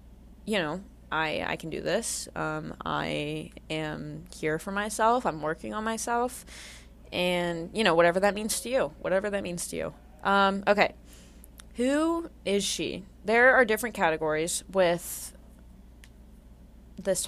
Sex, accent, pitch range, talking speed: female, American, 150-215 Hz, 140 wpm